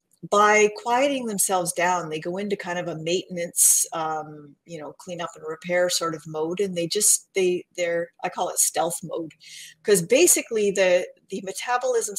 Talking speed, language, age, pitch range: 175 wpm, English, 40-59, 170-235 Hz